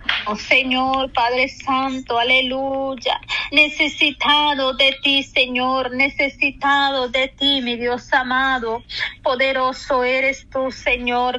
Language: Spanish